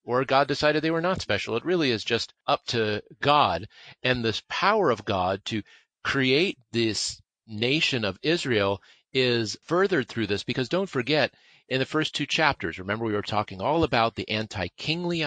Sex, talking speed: male, 175 wpm